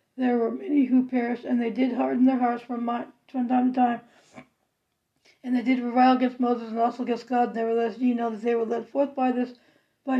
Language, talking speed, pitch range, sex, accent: English, 210 wpm, 230-255 Hz, female, American